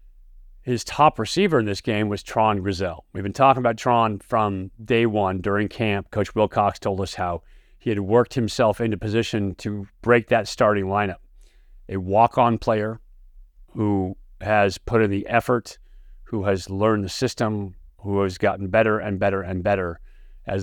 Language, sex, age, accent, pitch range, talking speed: English, male, 40-59, American, 95-110 Hz, 170 wpm